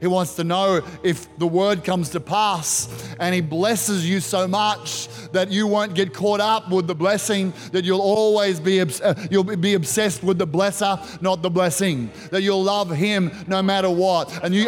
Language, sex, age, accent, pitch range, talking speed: English, male, 30-49, Australian, 190-240 Hz, 185 wpm